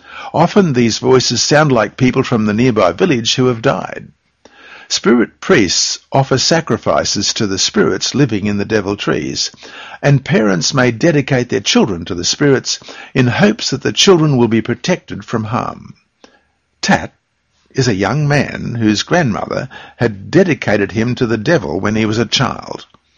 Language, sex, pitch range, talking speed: English, male, 110-140 Hz, 160 wpm